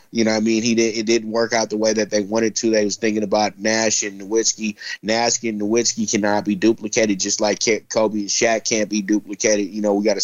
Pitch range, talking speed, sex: 105-115 Hz, 260 wpm, male